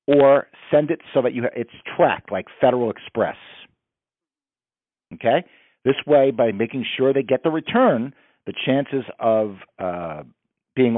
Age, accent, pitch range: 50-69, American, 110-145 Hz